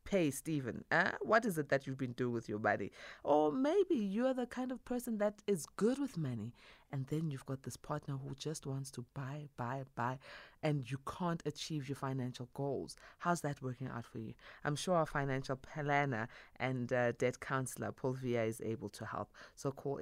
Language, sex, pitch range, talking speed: English, female, 120-175 Hz, 205 wpm